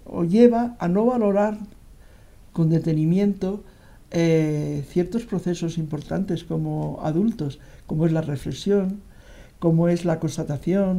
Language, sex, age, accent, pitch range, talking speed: Spanish, male, 60-79, Spanish, 165-215 Hz, 115 wpm